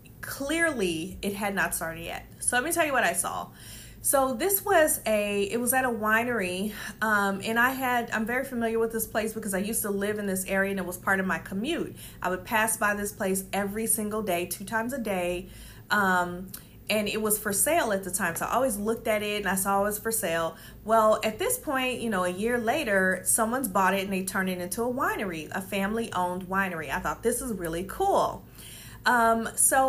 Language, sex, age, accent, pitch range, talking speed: English, female, 30-49, American, 195-260 Hz, 230 wpm